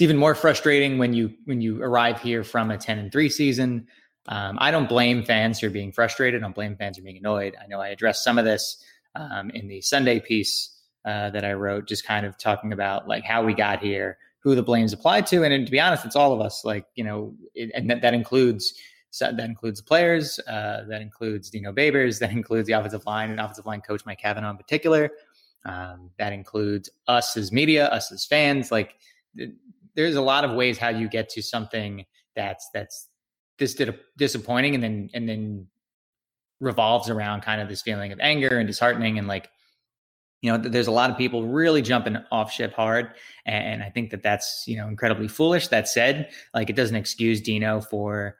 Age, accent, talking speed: 20-39, American, 215 wpm